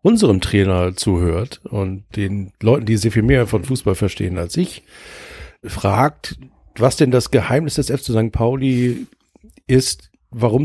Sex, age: male, 50-69